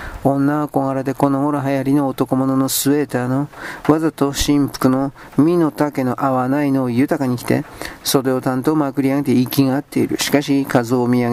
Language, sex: Japanese, male